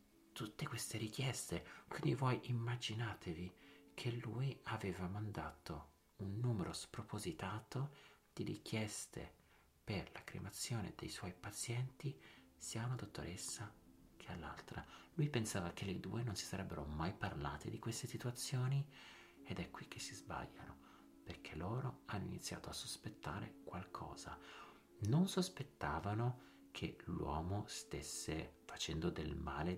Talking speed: 120 wpm